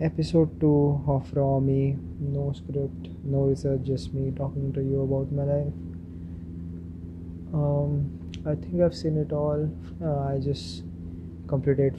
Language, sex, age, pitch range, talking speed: English, male, 20-39, 85-140 Hz, 140 wpm